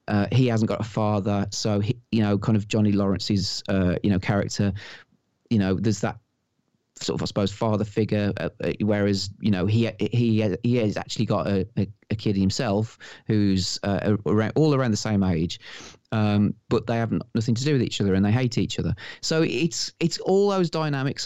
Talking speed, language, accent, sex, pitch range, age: 200 wpm, English, British, male, 100-125 Hz, 30-49